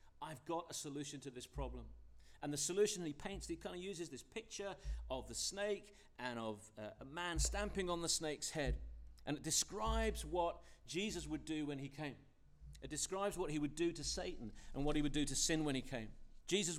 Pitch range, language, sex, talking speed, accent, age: 125-170 Hz, English, male, 210 wpm, British, 40-59